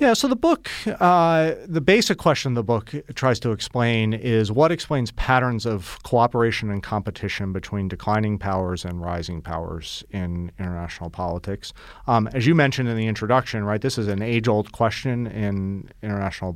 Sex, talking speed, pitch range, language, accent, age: male, 165 wpm, 95-125 Hz, English, American, 40-59